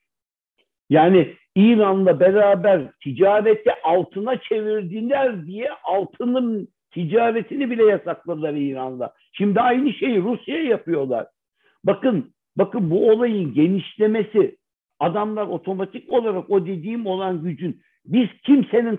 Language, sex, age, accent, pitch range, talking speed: Turkish, male, 60-79, native, 190-240 Hz, 100 wpm